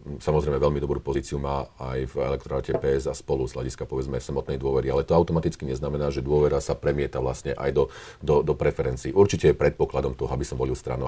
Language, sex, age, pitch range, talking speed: Slovak, male, 40-59, 65-70 Hz, 205 wpm